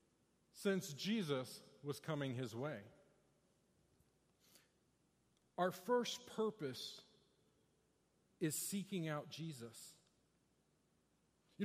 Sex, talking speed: male, 70 wpm